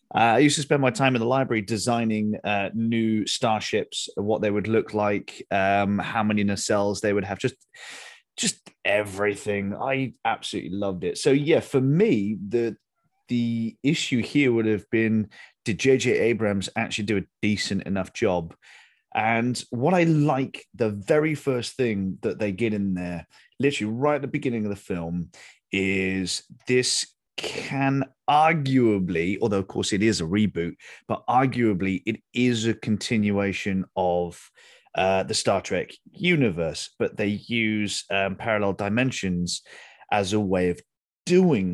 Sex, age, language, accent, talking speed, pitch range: male, 30-49, English, British, 155 wpm, 100-120 Hz